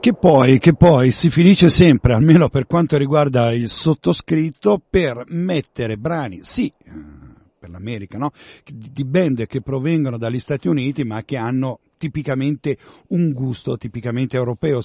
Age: 50-69